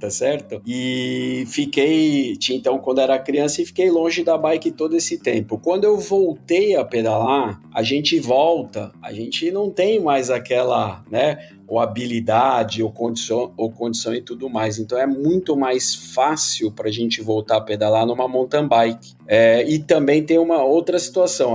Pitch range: 115-155 Hz